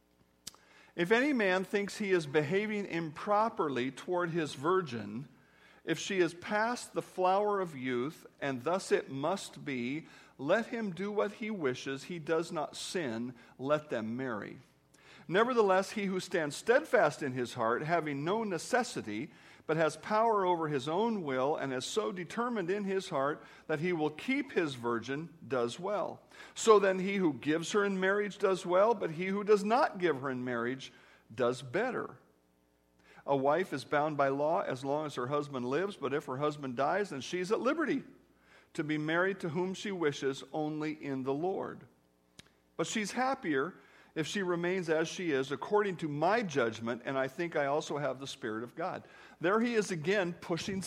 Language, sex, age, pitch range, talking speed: English, male, 50-69, 140-200 Hz, 180 wpm